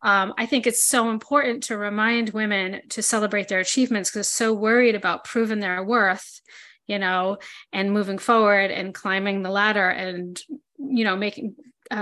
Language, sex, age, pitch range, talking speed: English, female, 30-49, 195-235 Hz, 170 wpm